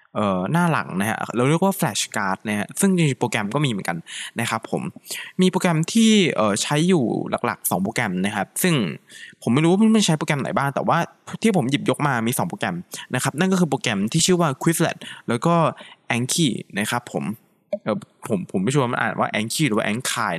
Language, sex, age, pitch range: Thai, male, 20-39, 120-175 Hz